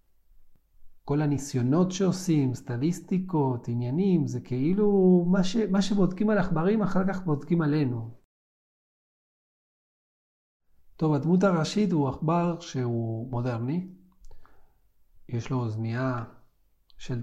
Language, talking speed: Hebrew, 100 wpm